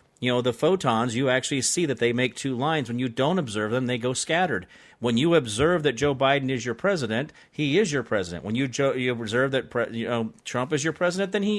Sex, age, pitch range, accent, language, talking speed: male, 40-59, 130-205 Hz, American, English, 250 wpm